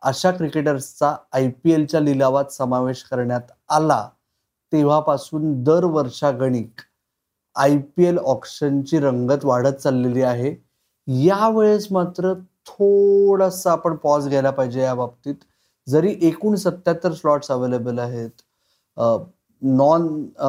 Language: Marathi